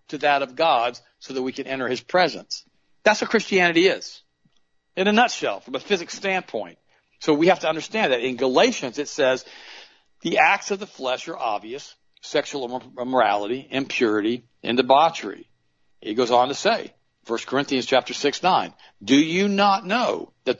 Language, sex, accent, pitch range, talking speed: English, male, American, 125-160 Hz, 170 wpm